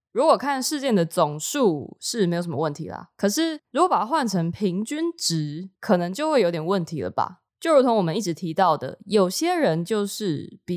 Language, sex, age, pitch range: Chinese, female, 20-39, 165-225 Hz